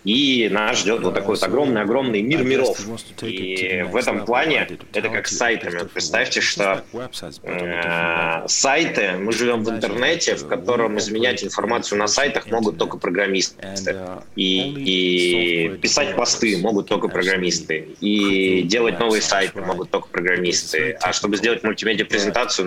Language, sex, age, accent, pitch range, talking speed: Russian, male, 20-39, native, 90-105 Hz, 140 wpm